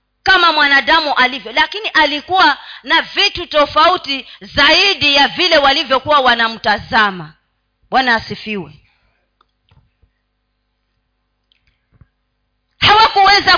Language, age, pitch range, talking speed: Swahili, 40-59, 255-360 Hz, 70 wpm